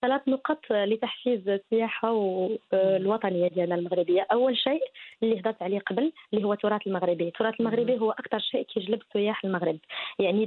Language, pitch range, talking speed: English, 195-240 Hz, 155 wpm